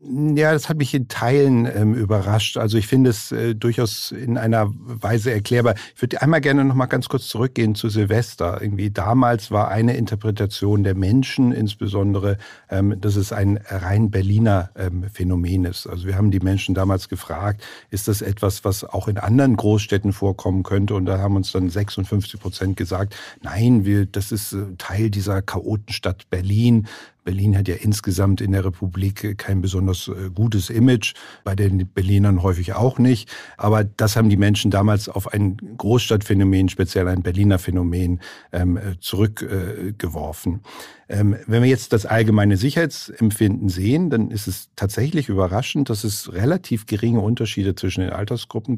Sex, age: male, 50-69